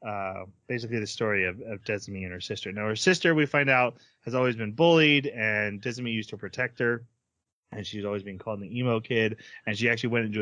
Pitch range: 115-160 Hz